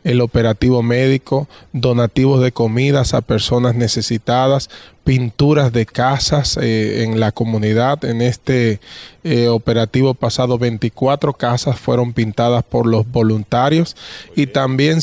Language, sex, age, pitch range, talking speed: English, male, 20-39, 120-140 Hz, 120 wpm